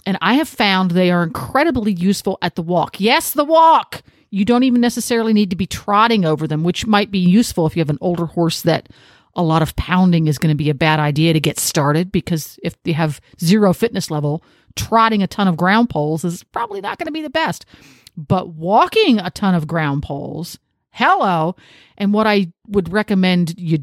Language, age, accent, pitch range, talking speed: English, 40-59, American, 165-210 Hz, 210 wpm